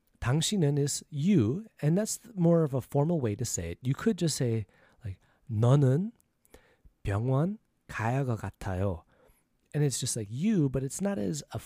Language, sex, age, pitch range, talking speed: English, male, 30-49, 105-150 Hz, 165 wpm